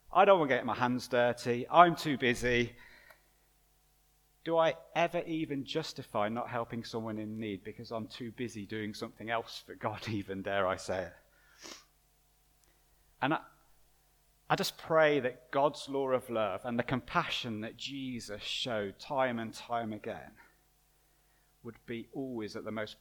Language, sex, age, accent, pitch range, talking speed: English, male, 30-49, British, 110-145 Hz, 160 wpm